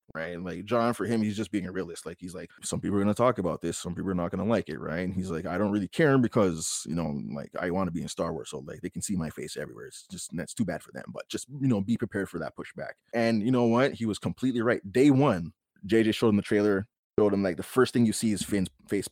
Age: 20-39